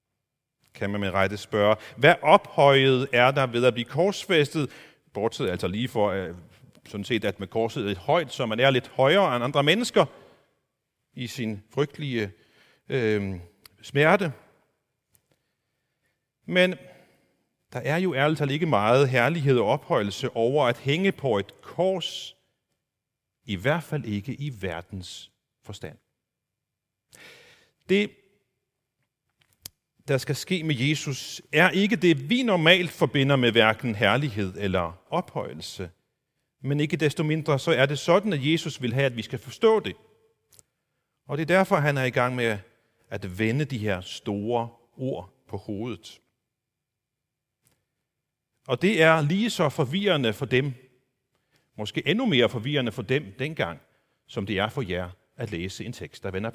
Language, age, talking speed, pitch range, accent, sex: Danish, 40-59, 150 wpm, 110-150 Hz, native, male